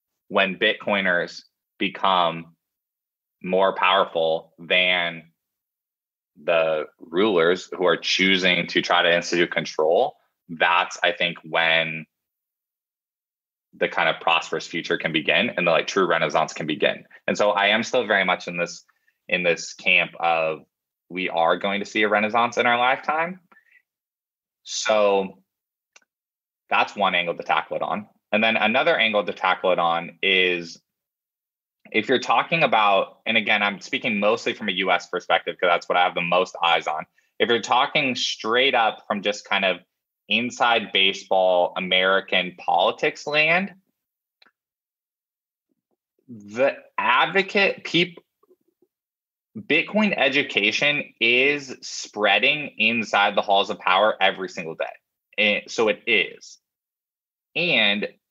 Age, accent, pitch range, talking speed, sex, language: 20-39, American, 90-150 Hz, 135 wpm, male, English